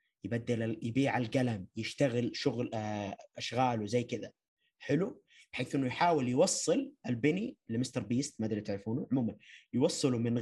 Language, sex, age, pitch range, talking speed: Arabic, male, 30-49, 115-150 Hz, 130 wpm